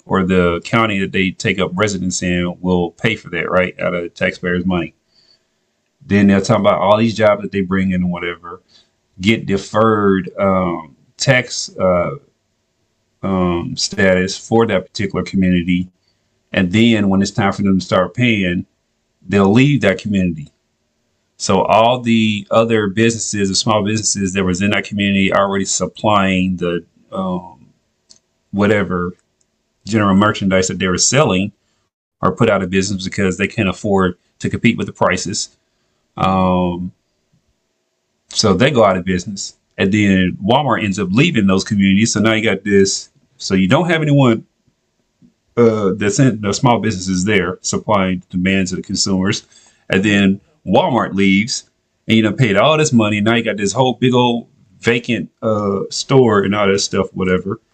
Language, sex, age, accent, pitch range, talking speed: English, male, 40-59, American, 90-110 Hz, 165 wpm